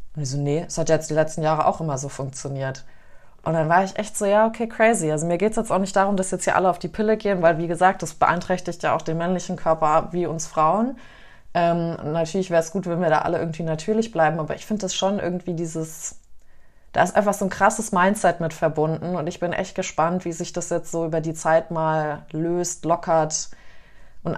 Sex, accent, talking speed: female, German, 240 wpm